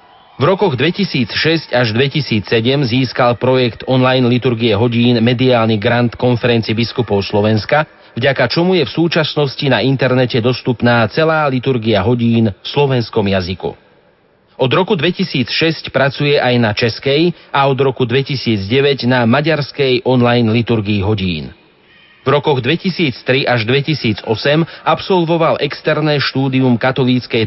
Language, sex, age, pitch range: Slovak, male, 40-59, 115-140 Hz